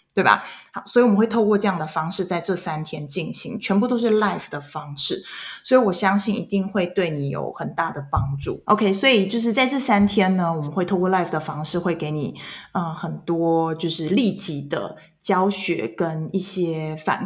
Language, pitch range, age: Chinese, 160-205 Hz, 20-39